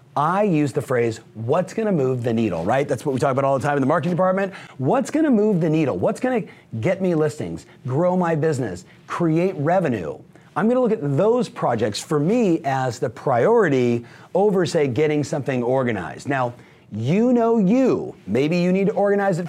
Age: 40-59